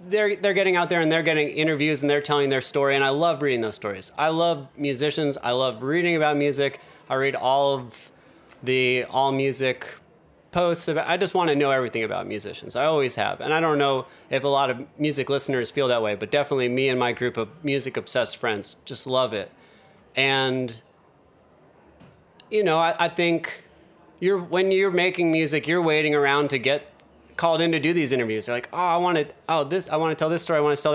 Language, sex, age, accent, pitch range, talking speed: English, male, 30-49, American, 130-165 Hz, 220 wpm